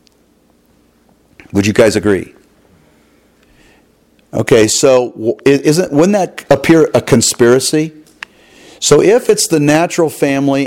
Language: English